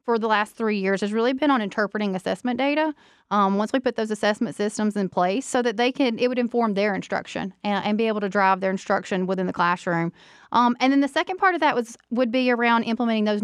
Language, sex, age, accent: English, female, 30-49, American